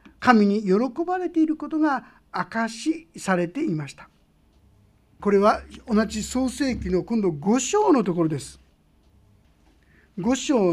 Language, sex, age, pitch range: Japanese, male, 50-69, 165-250 Hz